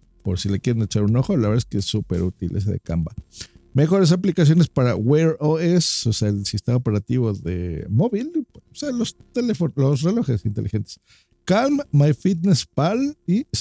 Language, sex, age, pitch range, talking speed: Spanish, male, 50-69, 115-185 Hz, 180 wpm